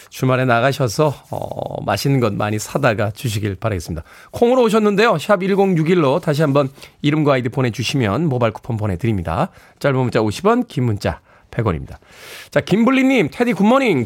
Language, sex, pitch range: Korean, male, 130-190 Hz